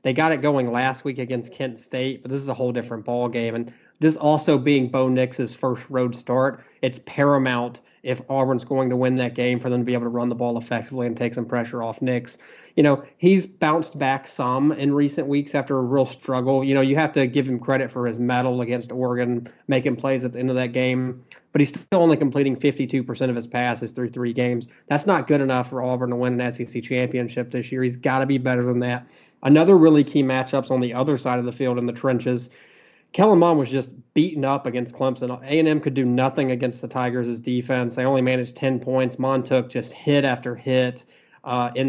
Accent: American